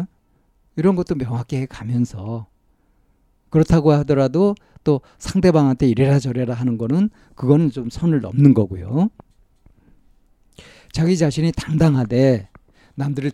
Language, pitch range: Korean, 120-150 Hz